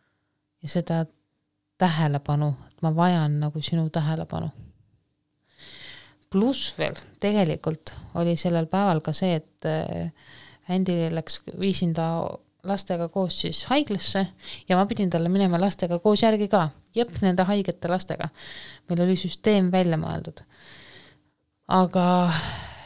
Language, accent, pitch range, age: English, Finnish, 160-205 Hz, 20-39